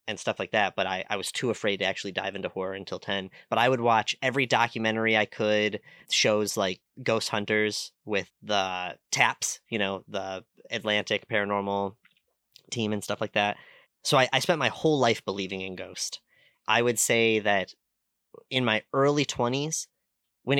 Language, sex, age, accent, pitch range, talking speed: English, male, 30-49, American, 100-125 Hz, 180 wpm